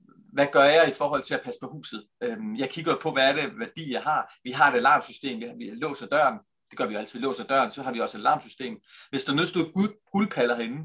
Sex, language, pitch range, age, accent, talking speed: male, Danish, 150-215 Hz, 30-49, native, 250 wpm